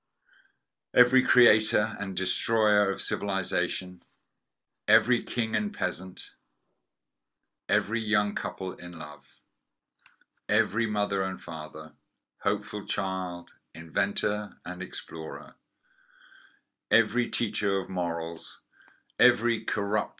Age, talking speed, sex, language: 50-69, 90 wpm, male, English